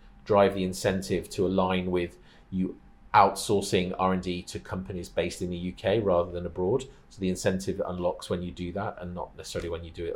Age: 40-59